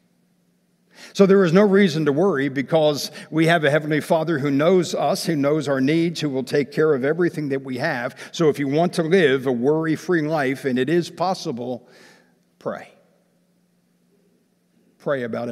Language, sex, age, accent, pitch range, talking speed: English, male, 60-79, American, 125-155 Hz, 175 wpm